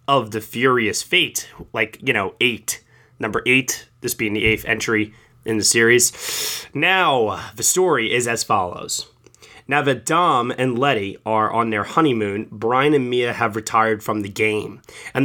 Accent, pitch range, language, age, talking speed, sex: American, 110-135 Hz, English, 20-39, 165 wpm, male